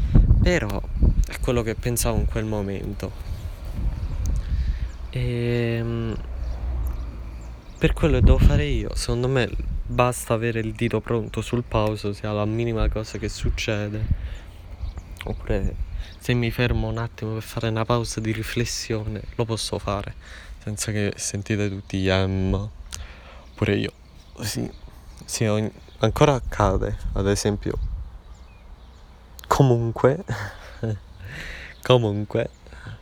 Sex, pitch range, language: male, 75-110 Hz, Italian